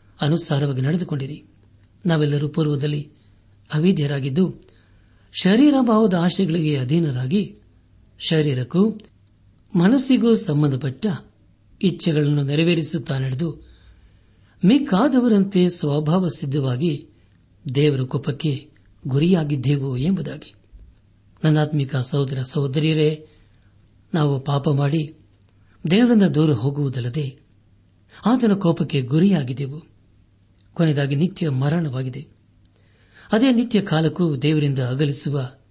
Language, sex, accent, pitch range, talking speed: Kannada, male, native, 105-165 Hz, 70 wpm